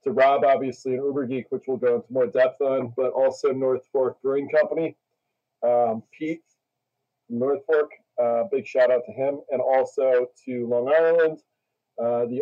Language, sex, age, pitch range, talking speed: English, male, 40-59, 125-160 Hz, 180 wpm